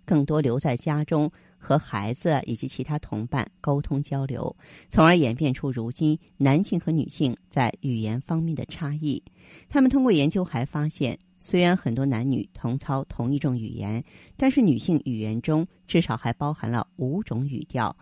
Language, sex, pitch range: Chinese, female, 125-160 Hz